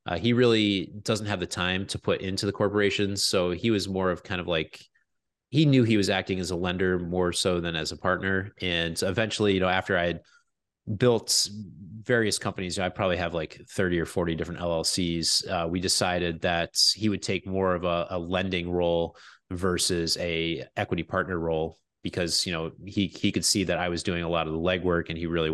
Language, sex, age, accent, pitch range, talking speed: English, male, 30-49, American, 85-100 Hz, 215 wpm